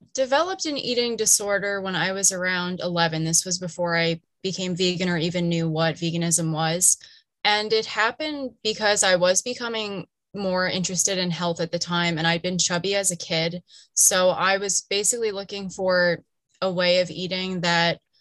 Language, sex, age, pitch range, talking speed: English, female, 20-39, 170-190 Hz, 175 wpm